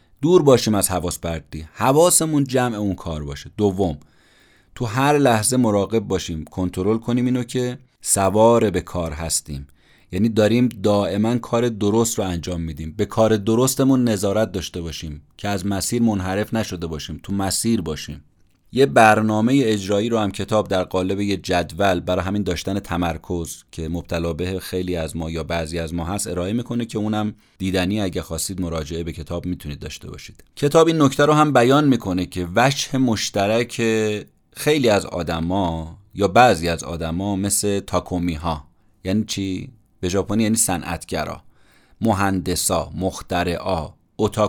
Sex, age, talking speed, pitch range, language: male, 30-49, 155 wpm, 85-110 Hz, Persian